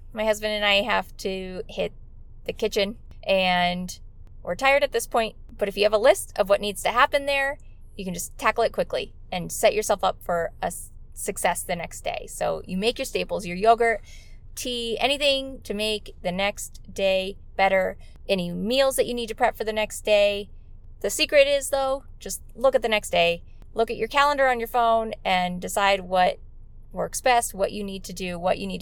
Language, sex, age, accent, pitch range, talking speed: English, female, 20-39, American, 195-250 Hz, 205 wpm